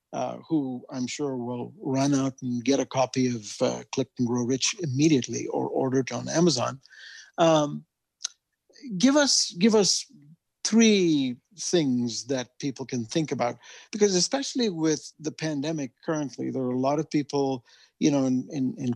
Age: 50-69